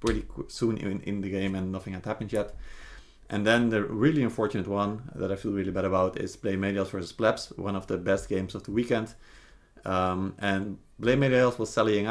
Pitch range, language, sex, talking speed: 95-115 Hz, English, male, 200 wpm